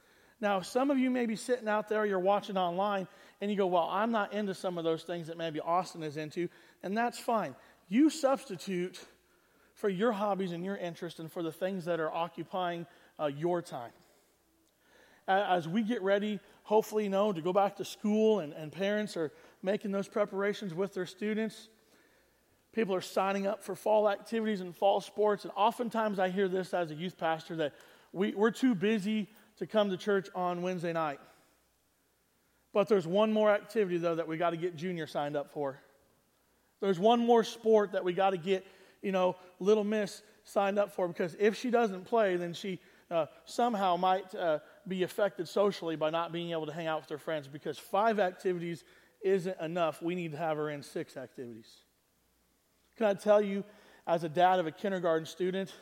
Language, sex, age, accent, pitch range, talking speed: English, male, 40-59, American, 170-210 Hz, 195 wpm